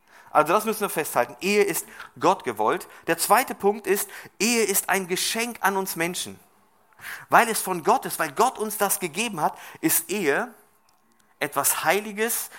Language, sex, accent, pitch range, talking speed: German, male, German, 140-185 Hz, 165 wpm